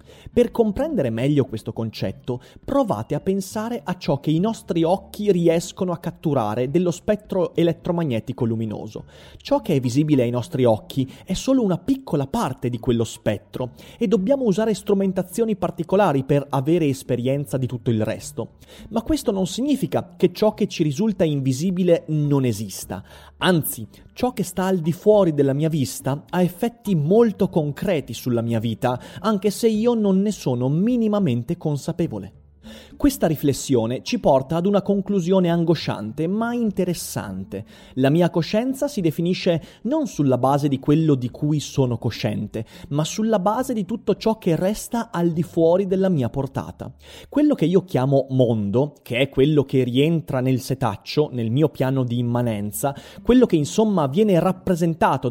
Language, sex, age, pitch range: Italian, male, 30-49, 130-200 Hz